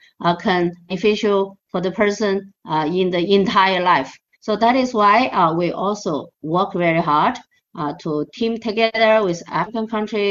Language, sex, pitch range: English, female, 185-245 Hz